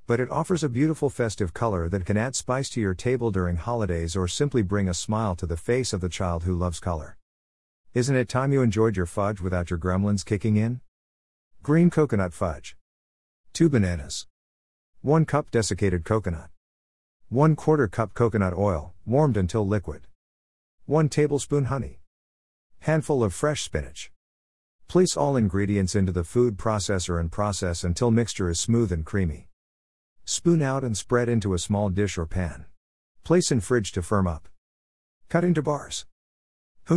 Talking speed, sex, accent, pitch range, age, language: 165 wpm, male, American, 85-115 Hz, 50-69, English